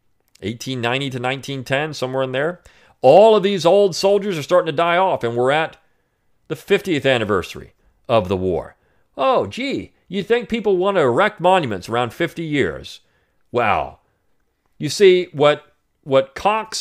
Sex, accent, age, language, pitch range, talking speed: male, American, 40-59, English, 120-170 Hz, 155 wpm